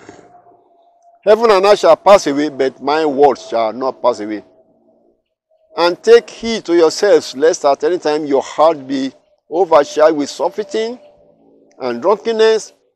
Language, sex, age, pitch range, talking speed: English, male, 50-69, 125-205 Hz, 140 wpm